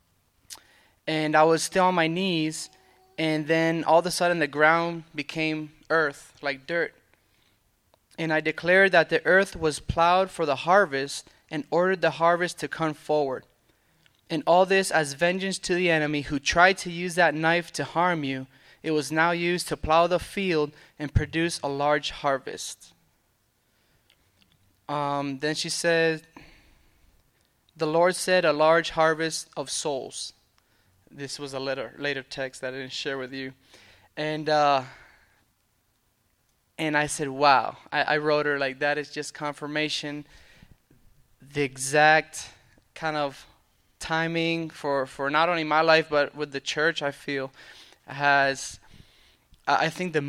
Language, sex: English, male